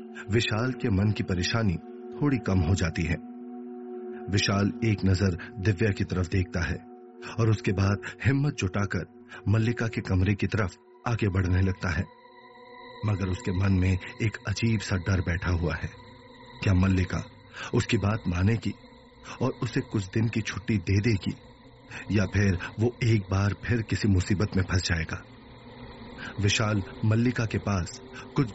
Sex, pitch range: male, 95-120 Hz